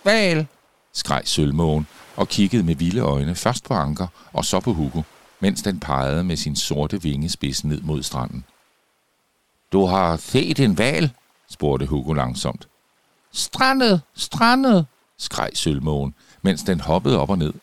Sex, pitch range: male, 75-110 Hz